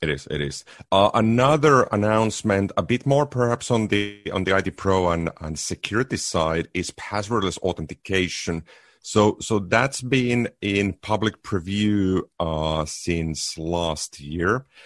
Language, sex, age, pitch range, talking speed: English, male, 40-59, 85-105 Hz, 140 wpm